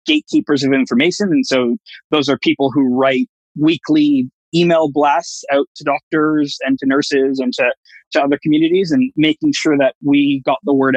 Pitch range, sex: 130-170 Hz, male